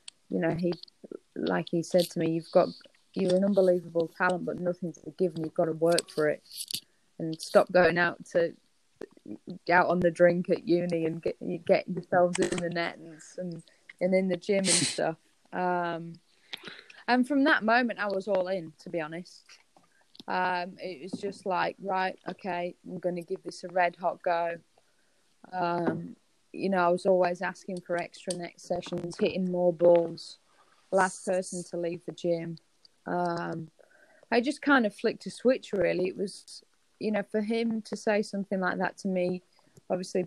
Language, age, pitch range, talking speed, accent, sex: English, 20-39, 170-195 Hz, 180 wpm, British, female